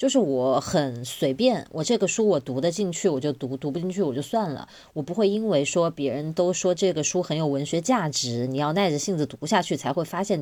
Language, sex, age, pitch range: Chinese, female, 20-39, 140-185 Hz